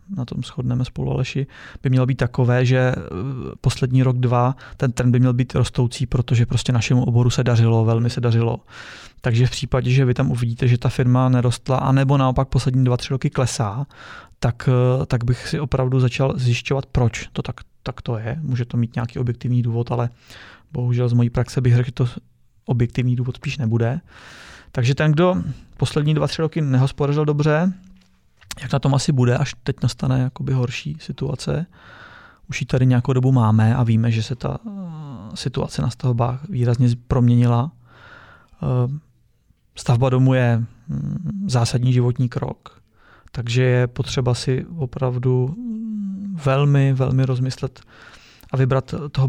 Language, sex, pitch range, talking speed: Czech, male, 120-135 Hz, 160 wpm